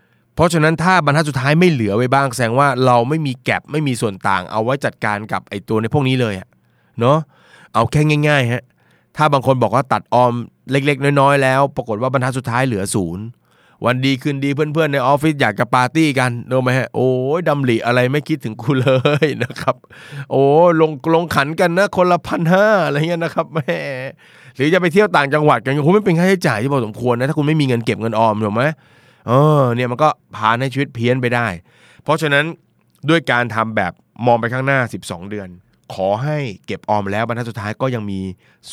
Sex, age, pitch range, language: male, 20-39, 100-140 Hz, Thai